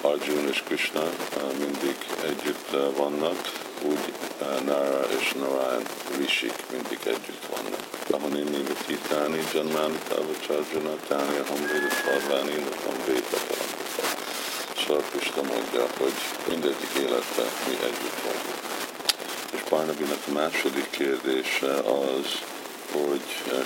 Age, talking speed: 50-69, 110 wpm